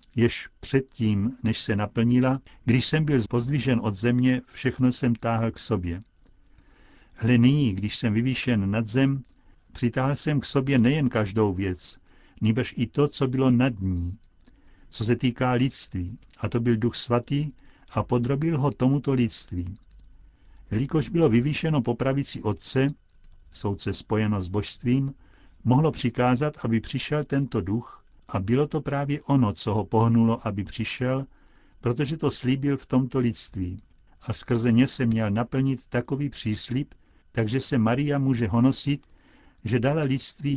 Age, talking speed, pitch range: 60-79, 145 wpm, 110-135 Hz